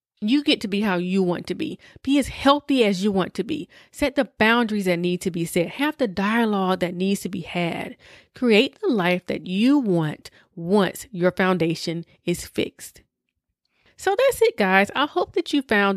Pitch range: 175-230 Hz